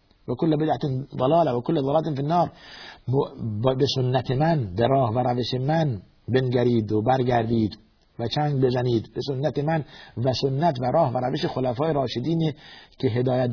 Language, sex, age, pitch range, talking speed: Persian, male, 60-79, 115-150 Hz, 155 wpm